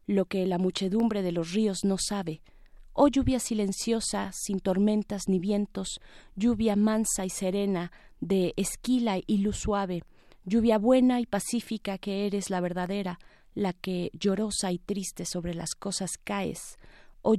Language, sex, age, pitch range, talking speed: Spanish, female, 30-49, 185-215 Hz, 150 wpm